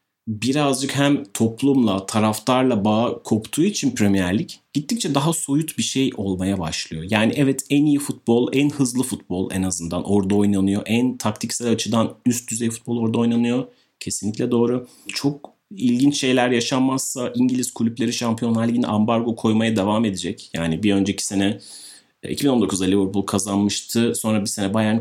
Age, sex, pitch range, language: 30-49, male, 100-130 Hz, Turkish